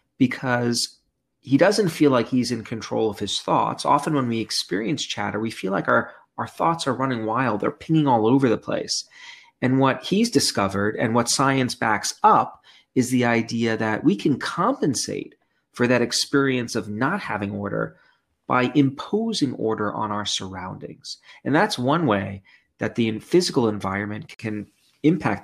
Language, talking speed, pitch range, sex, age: English, 165 wpm, 110-135 Hz, male, 40-59